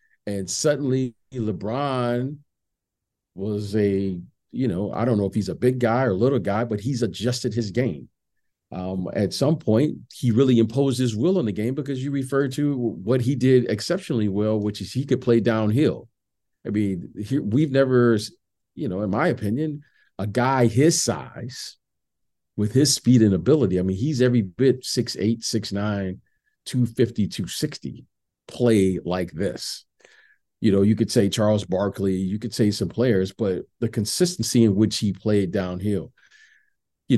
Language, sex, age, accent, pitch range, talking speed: English, male, 50-69, American, 100-130 Hz, 170 wpm